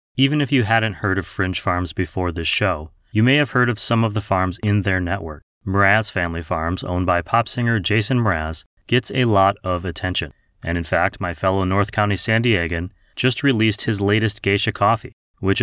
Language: English